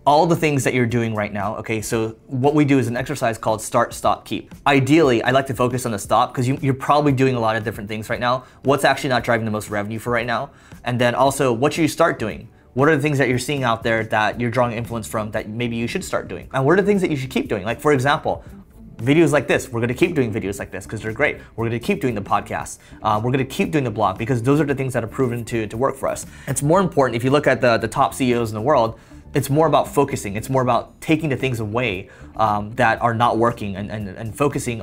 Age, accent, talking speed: 20-39, American, 280 wpm